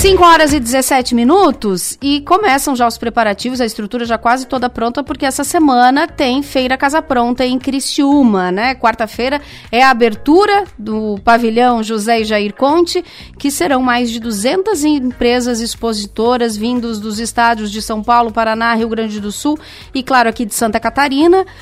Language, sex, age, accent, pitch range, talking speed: Portuguese, female, 30-49, Brazilian, 230-280 Hz, 165 wpm